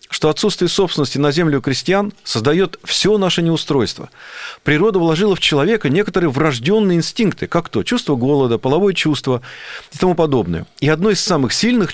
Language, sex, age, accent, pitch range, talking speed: Russian, male, 40-59, native, 140-195 Hz, 155 wpm